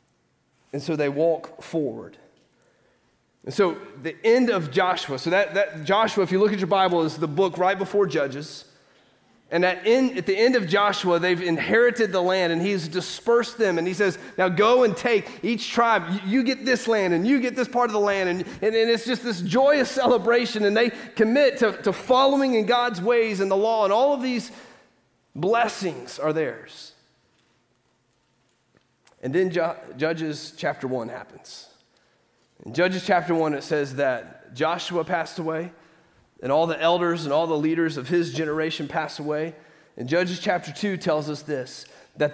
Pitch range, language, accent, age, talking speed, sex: 150-205 Hz, English, American, 30-49, 180 wpm, male